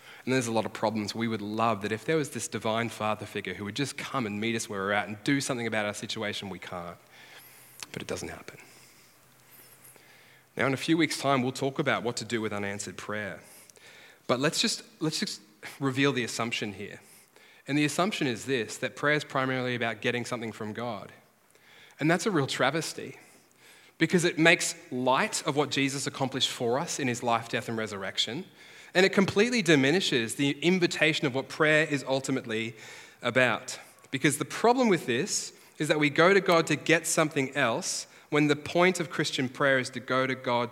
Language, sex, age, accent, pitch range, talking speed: English, male, 20-39, Australian, 120-165 Hz, 200 wpm